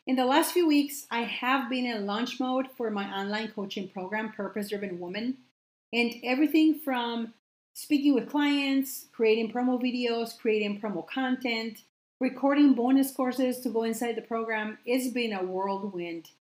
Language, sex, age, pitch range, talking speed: English, female, 40-59, 215-270 Hz, 155 wpm